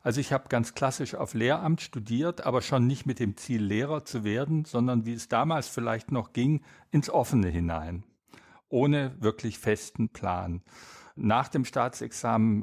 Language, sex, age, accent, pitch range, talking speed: German, male, 50-69, German, 110-135 Hz, 160 wpm